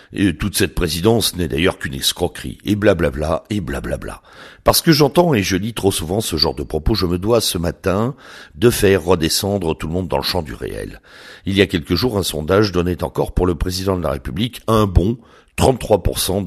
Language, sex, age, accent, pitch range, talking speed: French, male, 60-79, French, 85-110 Hz, 210 wpm